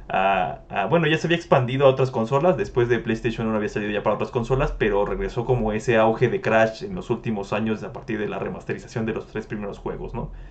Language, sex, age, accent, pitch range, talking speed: Spanish, male, 20-39, Mexican, 115-135 Hz, 240 wpm